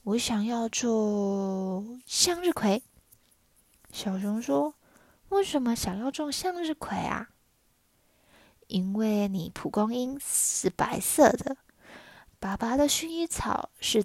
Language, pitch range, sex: Chinese, 195-270 Hz, female